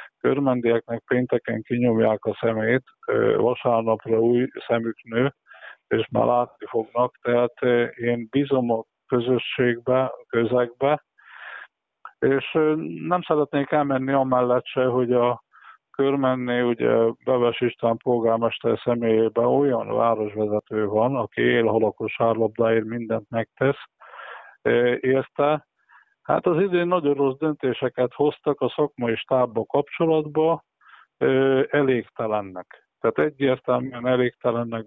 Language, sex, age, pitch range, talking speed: Hungarian, male, 50-69, 115-135 Hz, 100 wpm